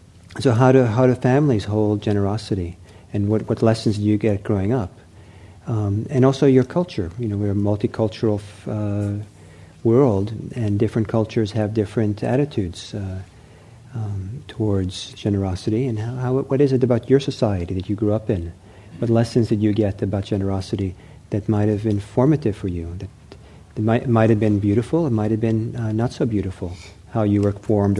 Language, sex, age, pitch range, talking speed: English, male, 50-69, 100-120 Hz, 185 wpm